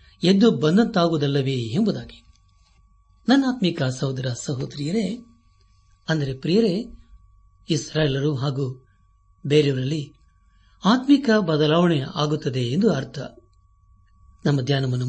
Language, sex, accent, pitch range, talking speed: Kannada, male, native, 95-155 Hz, 70 wpm